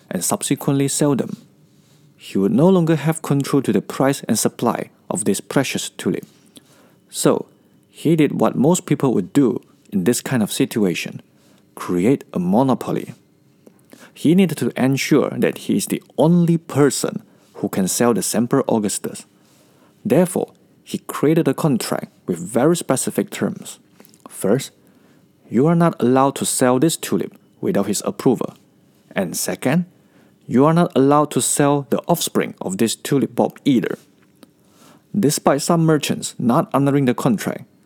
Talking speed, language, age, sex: 150 wpm, English, 50-69, male